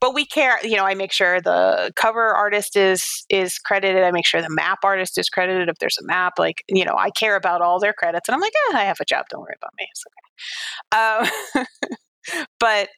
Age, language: 30-49, English